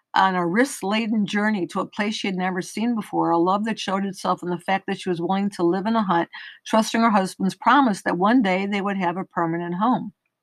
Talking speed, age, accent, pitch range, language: 240 wpm, 50-69, American, 175-220 Hz, English